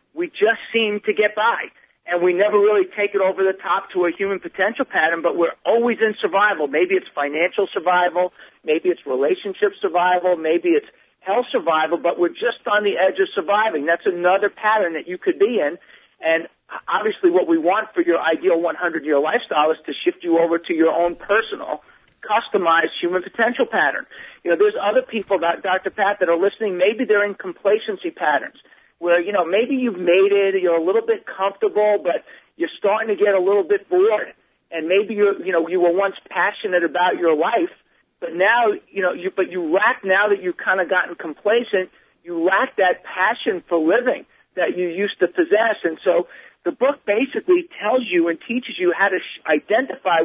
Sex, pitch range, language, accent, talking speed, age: male, 175-230 Hz, English, American, 195 wpm, 50-69